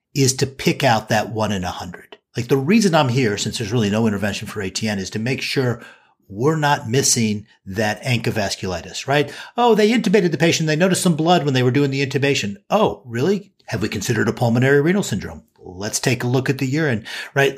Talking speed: 215 wpm